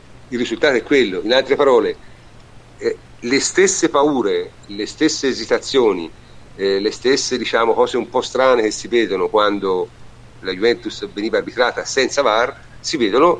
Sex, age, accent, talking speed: male, 50-69, native, 150 wpm